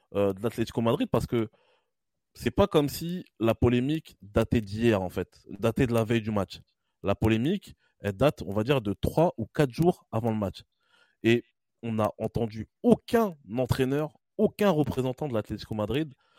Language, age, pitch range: French, 20-39, 115-165 Hz